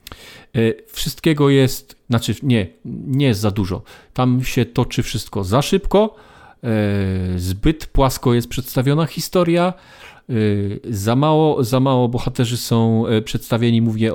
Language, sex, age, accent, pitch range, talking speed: Polish, male, 40-59, native, 105-130 Hz, 115 wpm